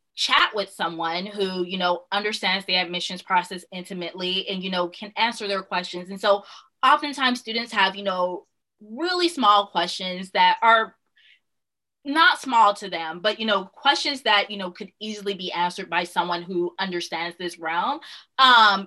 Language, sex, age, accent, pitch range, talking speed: English, female, 20-39, American, 175-210 Hz, 165 wpm